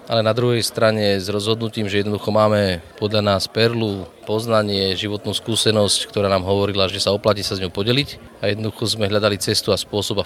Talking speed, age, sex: 195 wpm, 30-49, male